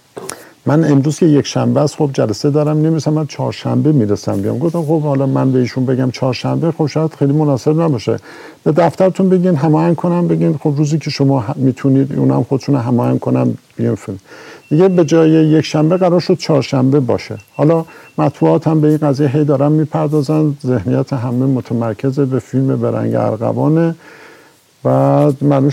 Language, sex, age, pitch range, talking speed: Persian, male, 50-69, 135-160 Hz, 165 wpm